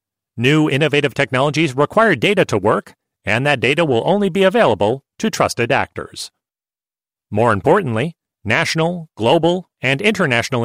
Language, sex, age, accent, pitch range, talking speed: English, male, 40-59, American, 120-170 Hz, 130 wpm